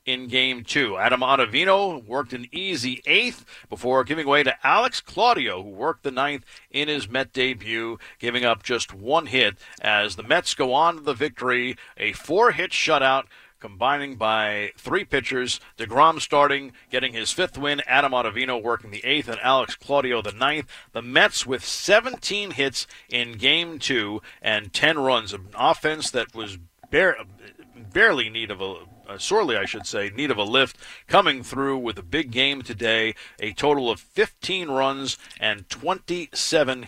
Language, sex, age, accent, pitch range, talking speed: English, male, 50-69, American, 115-150 Hz, 165 wpm